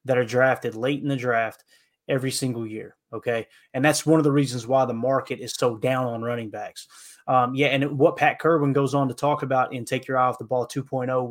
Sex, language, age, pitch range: male, English, 20-39, 125-145 Hz